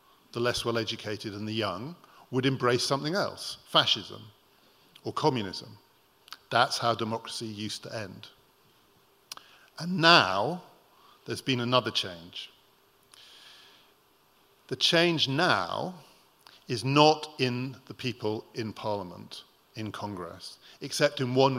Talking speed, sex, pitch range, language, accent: 115 wpm, male, 105-130 Hz, English, British